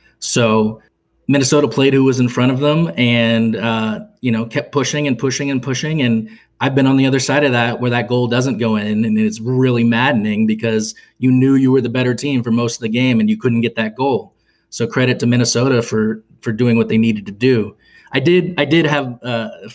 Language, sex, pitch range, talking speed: English, male, 110-125 Hz, 230 wpm